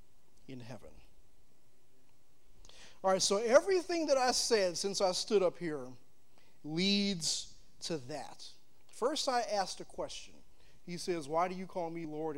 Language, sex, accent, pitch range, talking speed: English, male, American, 130-180 Hz, 145 wpm